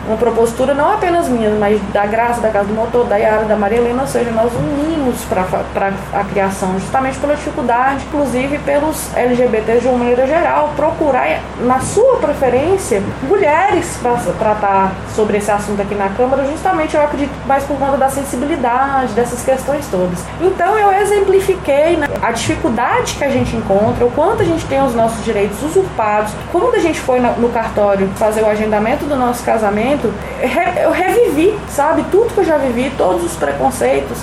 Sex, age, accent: female, 20-39, Brazilian